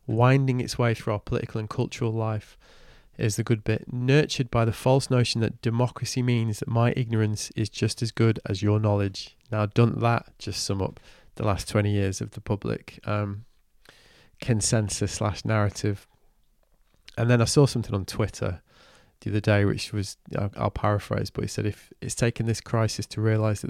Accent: British